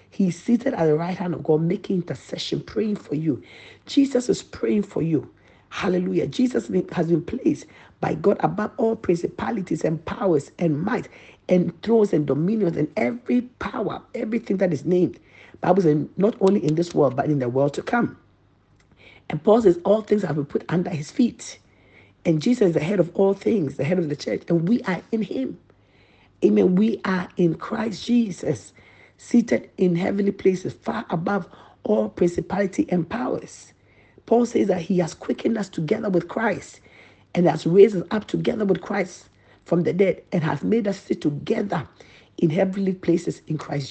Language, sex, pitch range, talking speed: English, male, 150-205 Hz, 180 wpm